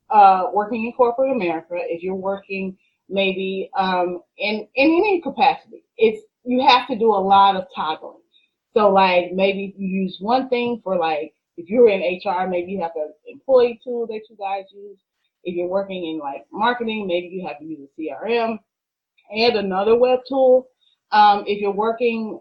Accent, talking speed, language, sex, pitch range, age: American, 180 wpm, English, female, 190-245 Hz, 30-49